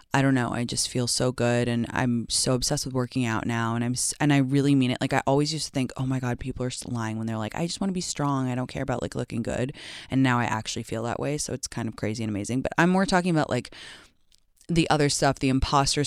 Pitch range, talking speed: 125-160 Hz, 285 wpm